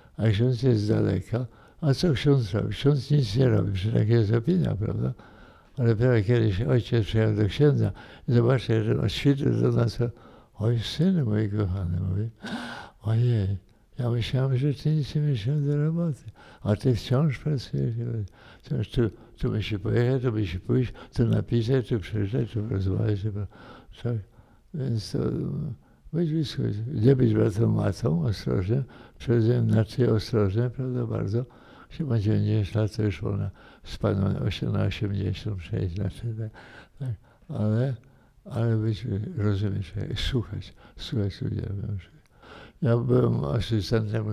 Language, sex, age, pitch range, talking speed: Polish, male, 60-79, 105-125 Hz, 140 wpm